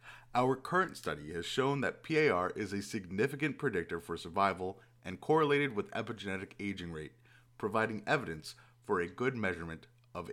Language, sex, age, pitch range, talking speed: English, male, 30-49, 95-120 Hz, 150 wpm